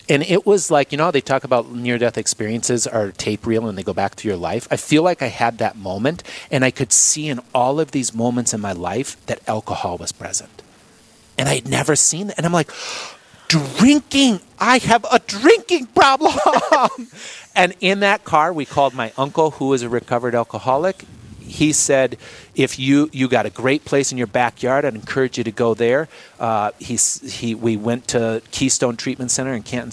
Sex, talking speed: male, 205 wpm